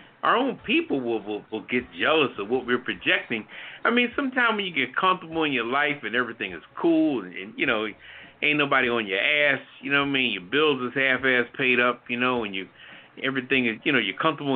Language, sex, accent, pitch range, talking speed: English, male, American, 125-190 Hz, 230 wpm